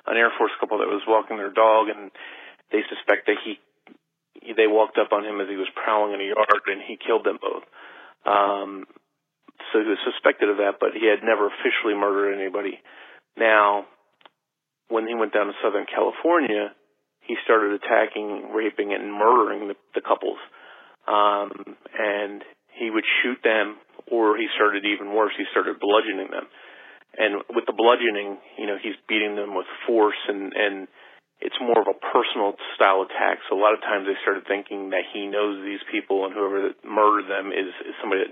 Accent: American